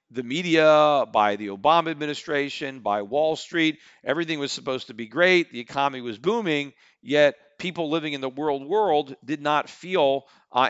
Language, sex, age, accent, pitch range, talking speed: English, male, 50-69, American, 125-155 Hz, 170 wpm